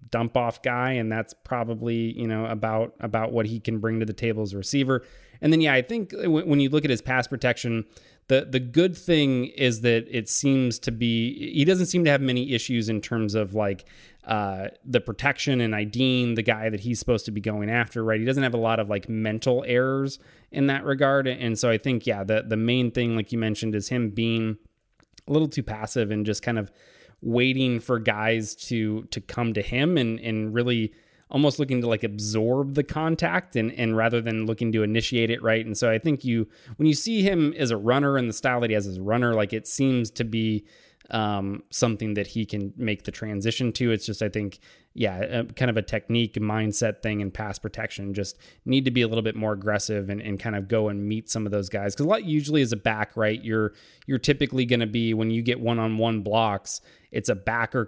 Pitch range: 110-125 Hz